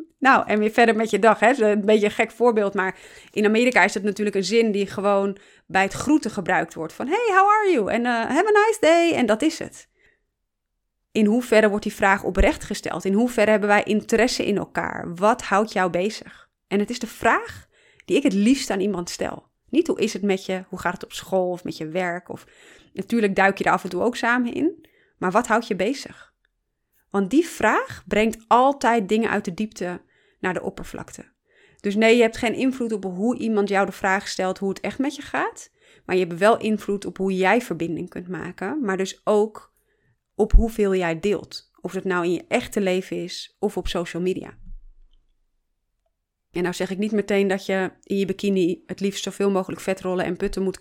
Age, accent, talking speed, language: 30-49, Dutch, 215 wpm, Dutch